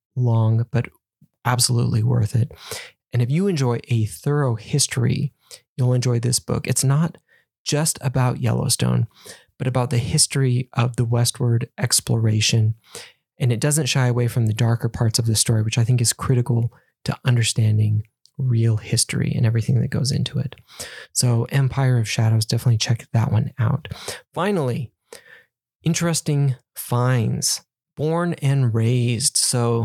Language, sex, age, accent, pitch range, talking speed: English, male, 20-39, American, 115-130 Hz, 145 wpm